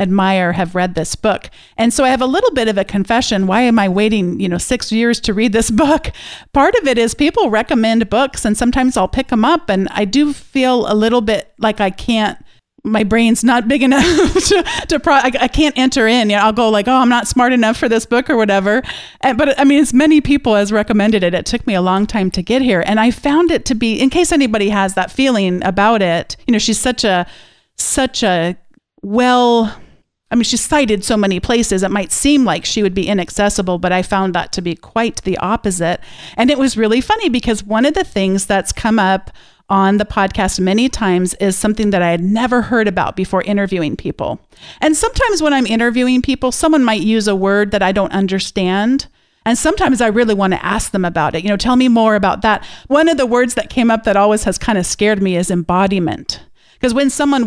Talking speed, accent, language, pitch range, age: 230 wpm, American, English, 195-255 Hz, 40-59